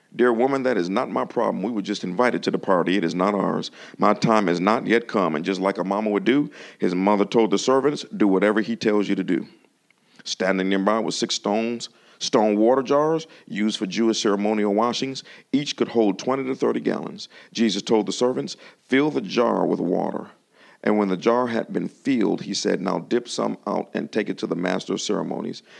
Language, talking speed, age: English, 215 wpm, 50-69